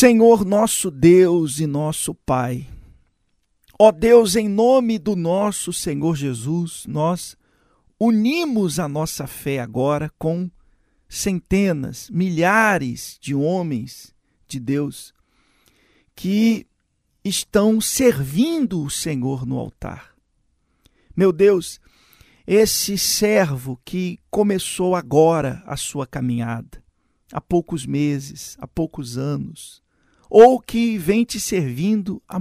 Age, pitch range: 50-69, 145-210 Hz